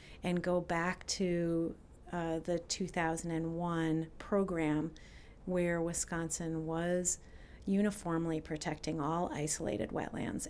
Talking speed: 90 wpm